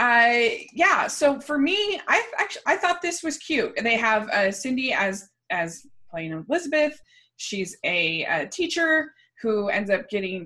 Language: English